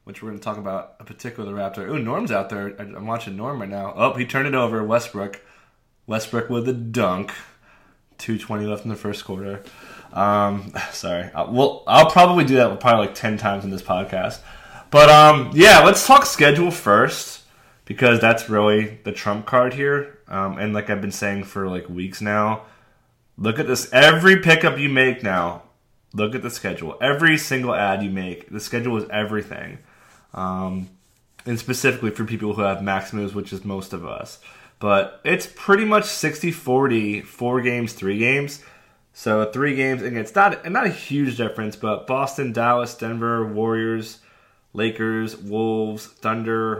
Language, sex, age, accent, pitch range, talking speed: English, male, 20-39, American, 100-125 Hz, 175 wpm